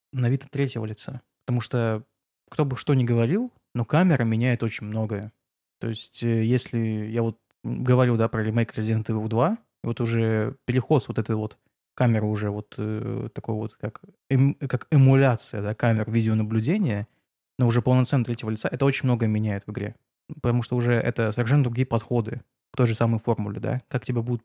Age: 20-39